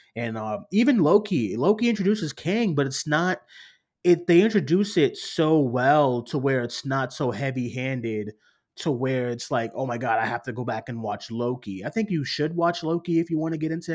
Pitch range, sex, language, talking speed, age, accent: 120-150 Hz, male, English, 215 wpm, 30-49, American